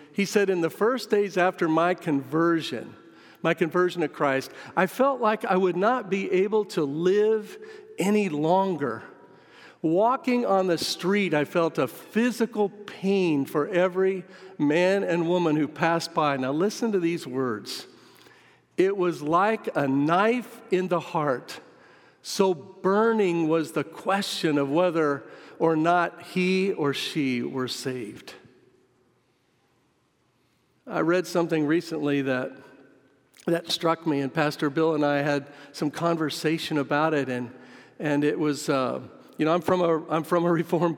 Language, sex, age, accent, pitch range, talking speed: English, male, 50-69, American, 150-190 Hz, 150 wpm